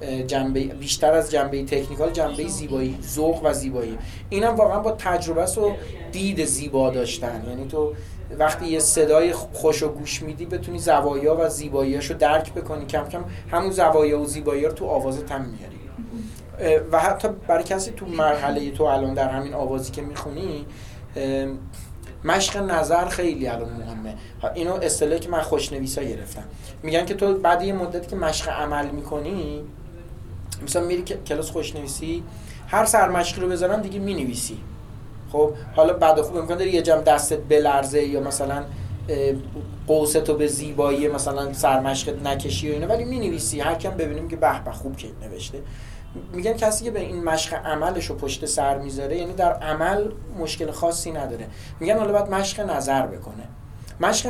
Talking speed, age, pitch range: 155 wpm, 30-49, 125-165 Hz